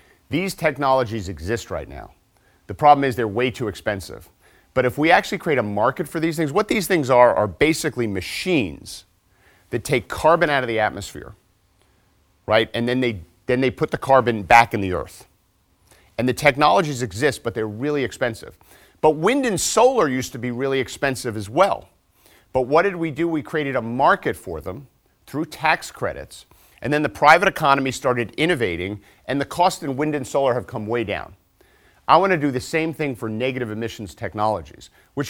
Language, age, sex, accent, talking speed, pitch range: English, 40-59, male, American, 190 wpm, 105-145 Hz